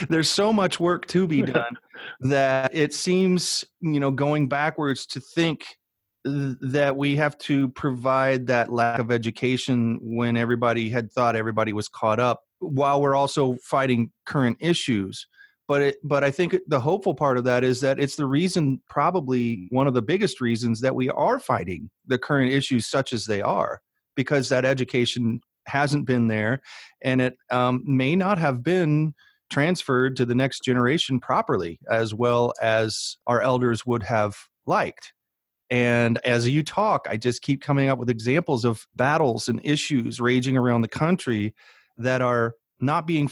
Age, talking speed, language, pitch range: 30-49, 170 wpm, English, 120-145 Hz